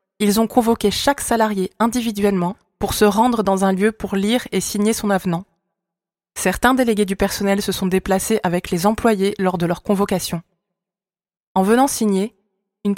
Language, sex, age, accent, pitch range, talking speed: French, female, 20-39, French, 190-220 Hz, 165 wpm